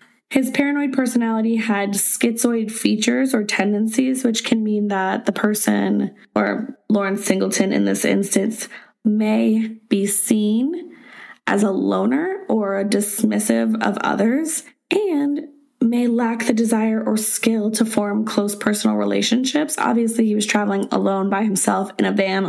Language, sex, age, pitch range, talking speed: English, female, 20-39, 195-240 Hz, 140 wpm